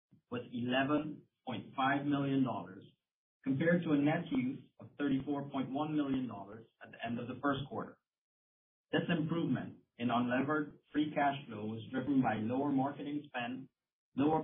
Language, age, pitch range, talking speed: English, 30-49, 120-145 Hz, 160 wpm